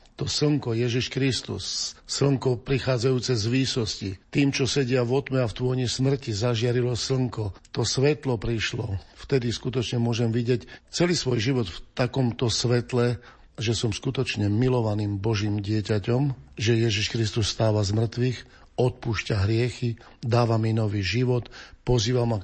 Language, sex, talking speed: Slovak, male, 140 wpm